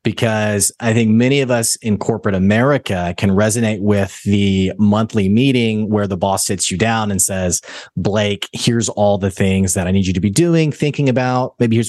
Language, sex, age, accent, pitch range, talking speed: English, male, 30-49, American, 105-140 Hz, 195 wpm